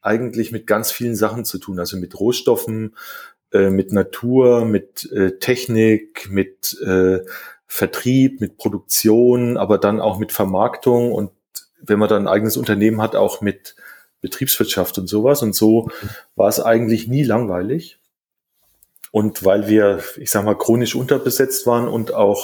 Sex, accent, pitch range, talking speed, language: male, German, 100-120 Hz, 145 wpm, German